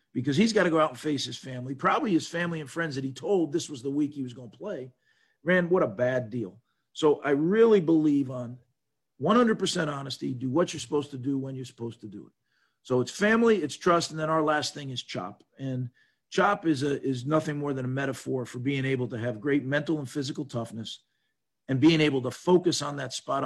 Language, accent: English, American